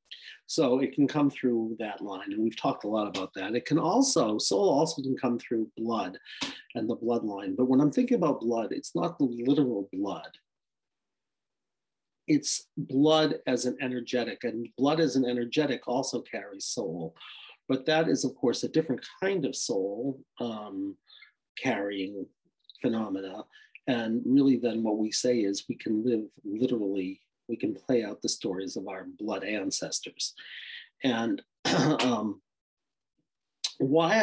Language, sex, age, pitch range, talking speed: English, male, 40-59, 110-140 Hz, 150 wpm